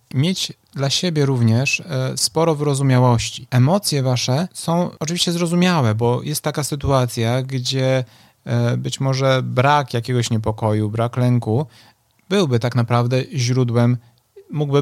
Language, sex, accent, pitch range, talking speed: Polish, male, native, 120-140 Hz, 115 wpm